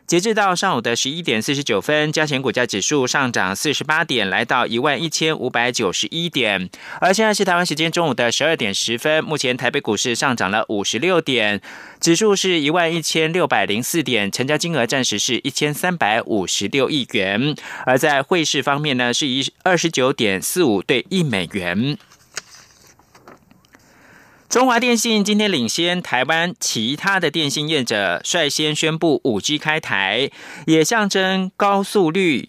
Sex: male